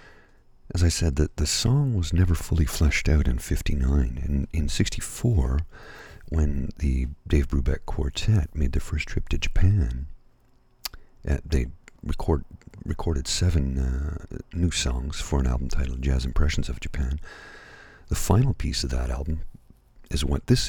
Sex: male